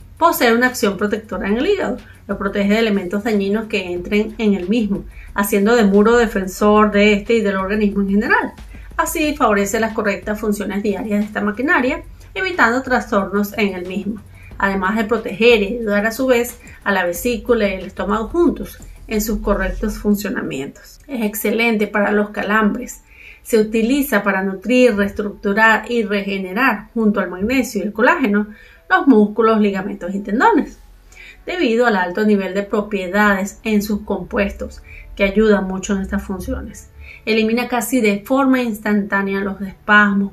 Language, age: Spanish, 30-49